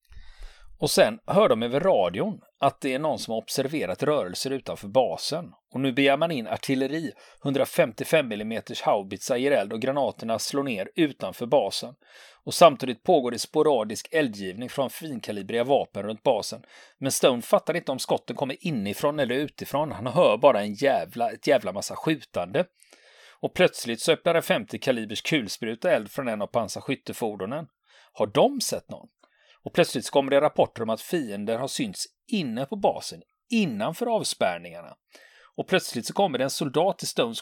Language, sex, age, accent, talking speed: Swedish, male, 40-59, native, 165 wpm